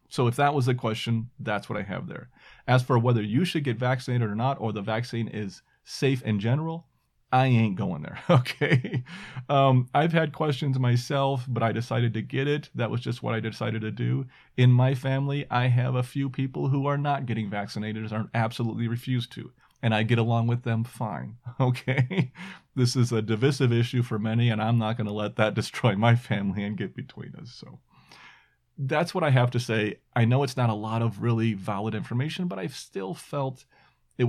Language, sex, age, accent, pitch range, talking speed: English, male, 40-59, American, 115-135 Hz, 210 wpm